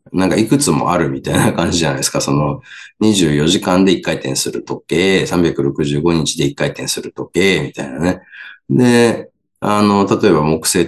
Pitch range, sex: 75-120 Hz, male